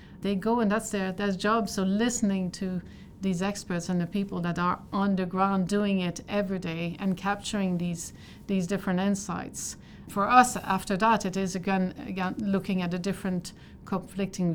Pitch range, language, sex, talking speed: 175-200 Hz, English, female, 175 wpm